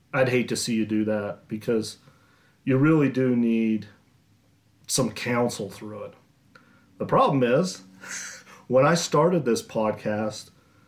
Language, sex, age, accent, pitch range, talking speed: English, male, 40-59, American, 105-130 Hz, 130 wpm